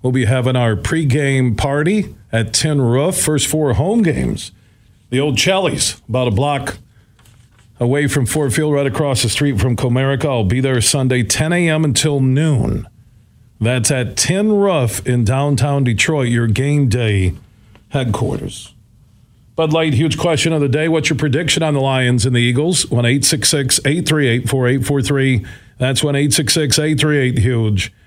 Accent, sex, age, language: American, male, 40-59, English